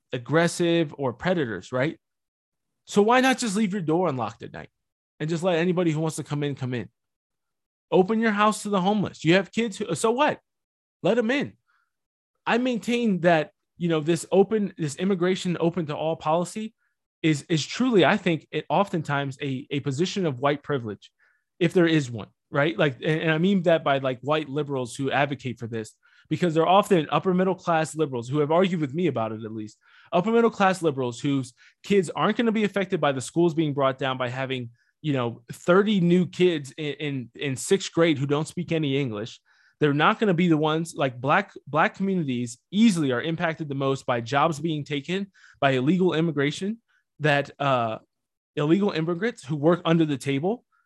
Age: 20-39